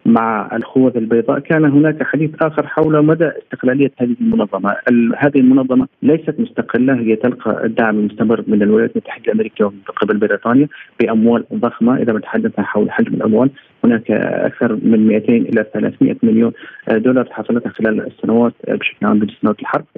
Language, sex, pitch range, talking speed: Arabic, male, 120-150 Hz, 145 wpm